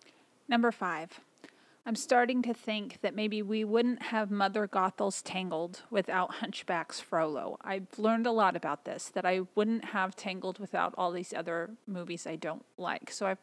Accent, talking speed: American, 170 wpm